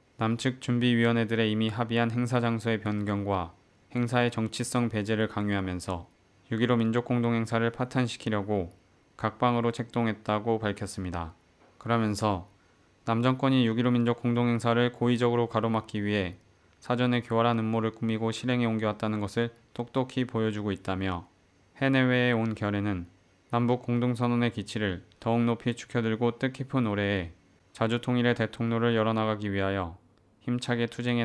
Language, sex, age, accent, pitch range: Korean, male, 20-39, native, 100-120 Hz